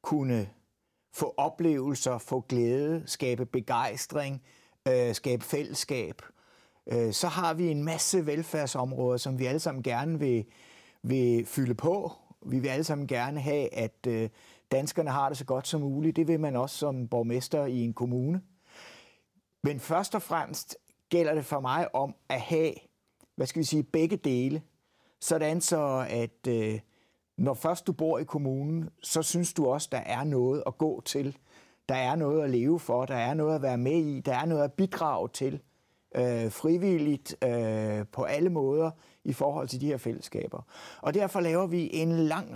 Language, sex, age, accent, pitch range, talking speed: Danish, male, 60-79, native, 125-160 Hz, 165 wpm